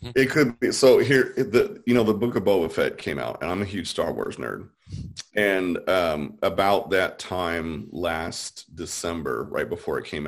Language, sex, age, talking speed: English, male, 30-49, 195 wpm